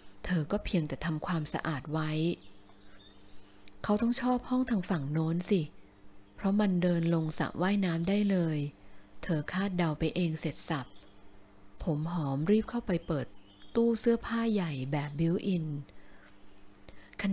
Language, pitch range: Thai, 145-195 Hz